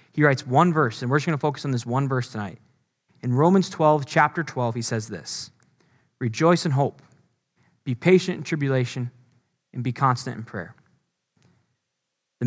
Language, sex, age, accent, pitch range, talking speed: English, male, 10-29, American, 125-160 Hz, 170 wpm